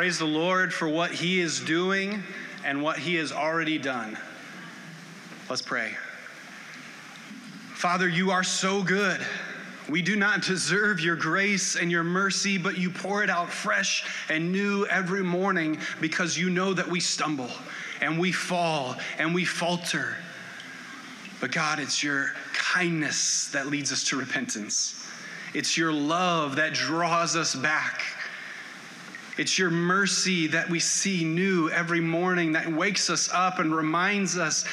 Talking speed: 145 wpm